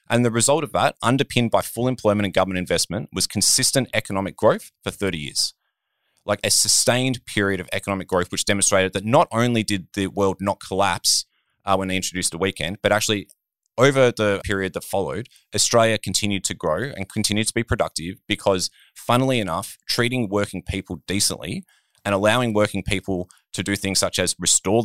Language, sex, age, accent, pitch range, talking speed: English, male, 20-39, Australian, 90-110 Hz, 180 wpm